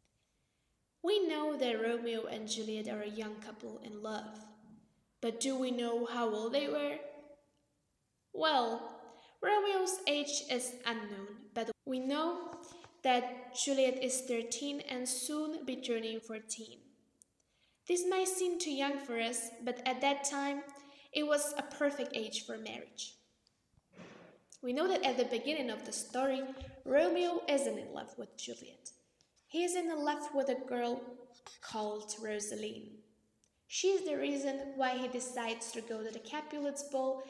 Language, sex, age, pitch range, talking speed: Slovak, female, 10-29, 230-285 Hz, 150 wpm